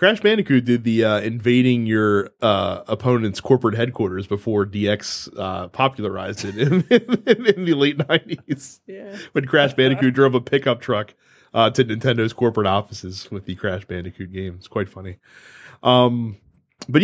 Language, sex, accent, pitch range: English, male, American, 105-165 Hz